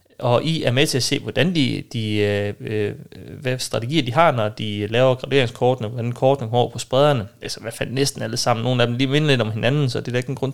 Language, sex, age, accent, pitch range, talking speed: Danish, male, 30-49, native, 115-150 Hz, 260 wpm